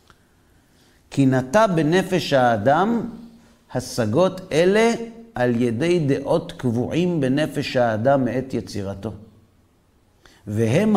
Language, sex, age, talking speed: Hebrew, male, 50-69, 80 wpm